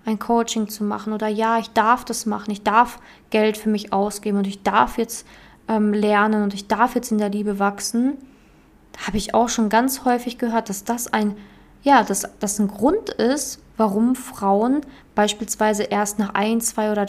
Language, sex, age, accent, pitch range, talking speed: German, female, 20-39, German, 205-245 Hz, 180 wpm